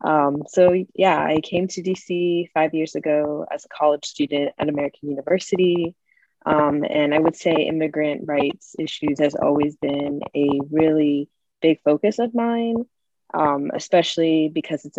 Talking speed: 150 wpm